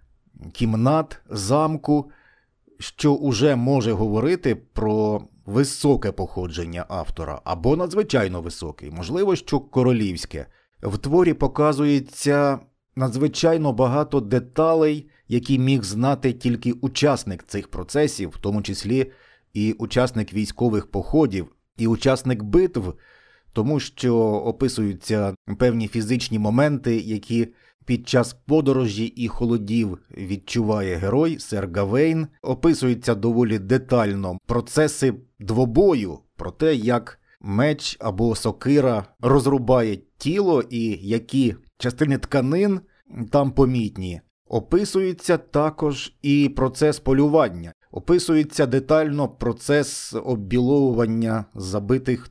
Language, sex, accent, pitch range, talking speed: Ukrainian, male, native, 110-145 Hz, 95 wpm